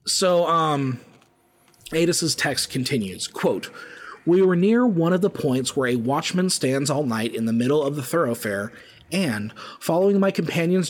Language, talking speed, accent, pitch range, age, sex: English, 155 wpm, American, 125-170 Hz, 30-49, male